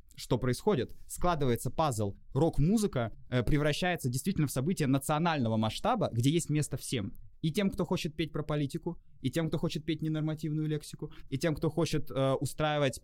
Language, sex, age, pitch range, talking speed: Russian, male, 20-39, 115-155 Hz, 165 wpm